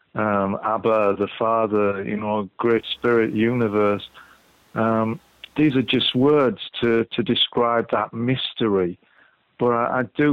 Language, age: English, 40-59